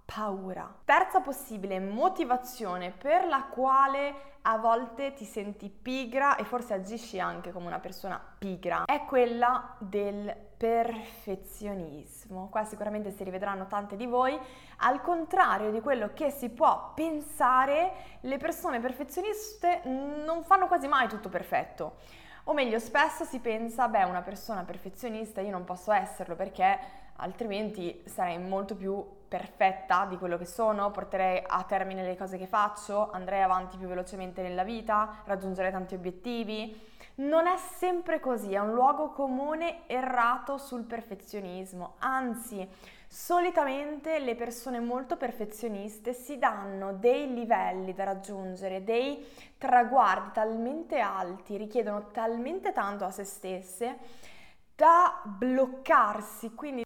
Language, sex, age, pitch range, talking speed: Italian, female, 20-39, 195-280 Hz, 130 wpm